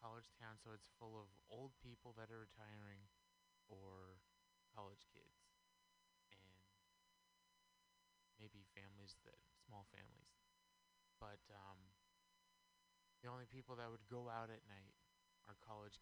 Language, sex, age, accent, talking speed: English, male, 20-39, American, 125 wpm